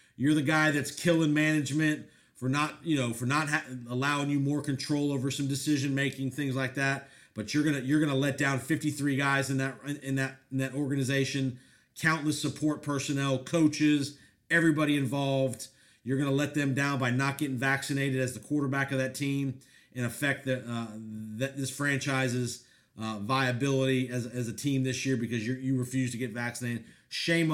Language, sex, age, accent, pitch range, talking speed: English, male, 40-59, American, 130-145 Hz, 185 wpm